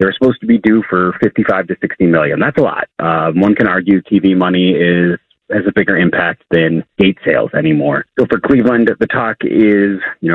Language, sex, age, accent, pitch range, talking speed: English, male, 30-49, American, 85-110 Hz, 205 wpm